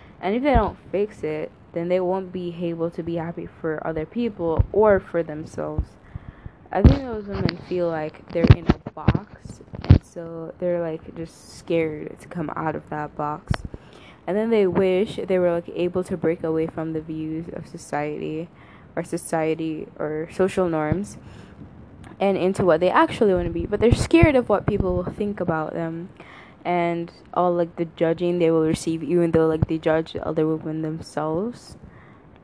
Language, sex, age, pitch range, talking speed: English, female, 10-29, 155-185 Hz, 180 wpm